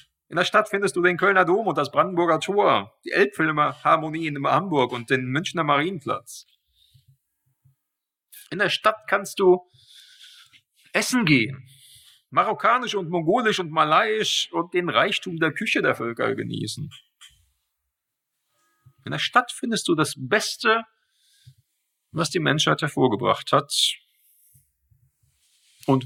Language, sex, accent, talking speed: German, male, German, 120 wpm